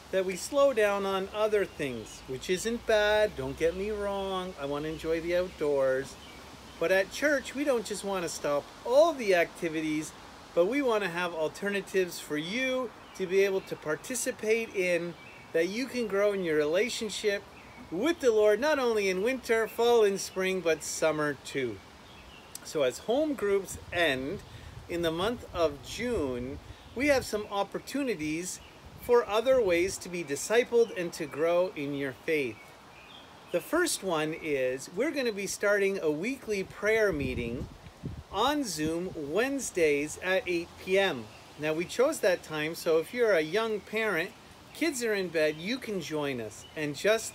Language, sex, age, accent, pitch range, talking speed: English, male, 40-59, American, 165-235 Hz, 165 wpm